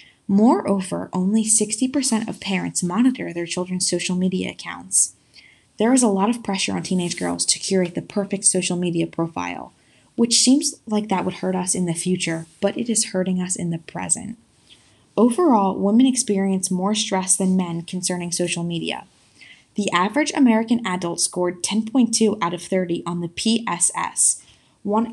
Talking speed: 160 wpm